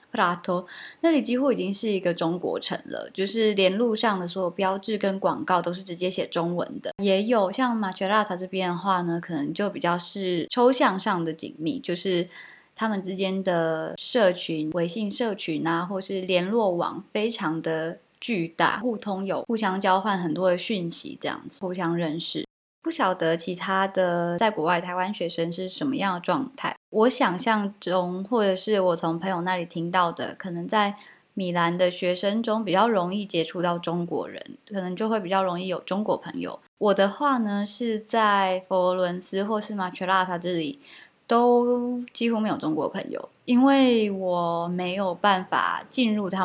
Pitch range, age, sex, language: 175-220 Hz, 20-39, female, Chinese